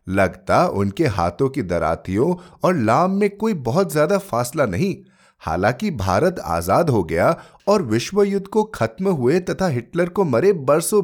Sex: male